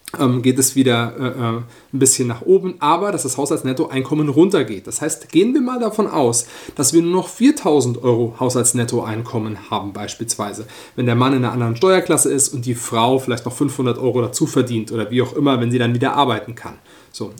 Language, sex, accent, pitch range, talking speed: German, male, German, 125-195 Hz, 200 wpm